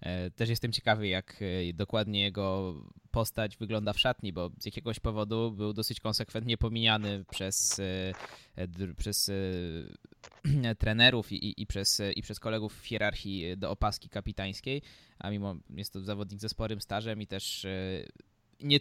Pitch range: 100-115 Hz